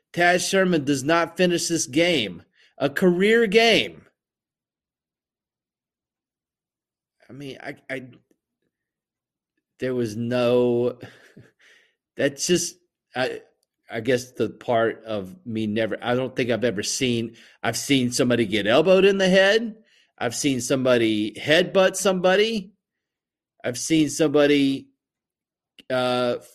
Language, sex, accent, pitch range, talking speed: English, male, American, 120-170 Hz, 120 wpm